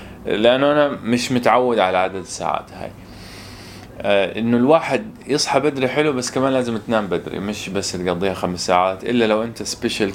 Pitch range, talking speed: 95-120 Hz, 165 wpm